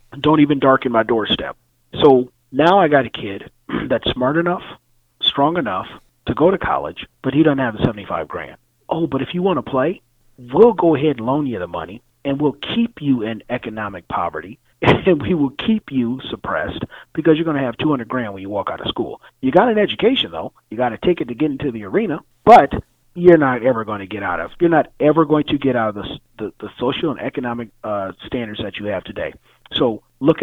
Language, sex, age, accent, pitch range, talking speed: English, male, 30-49, American, 120-165 Hz, 225 wpm